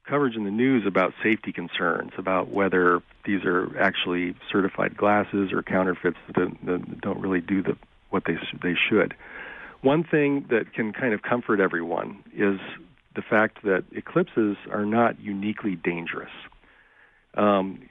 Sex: male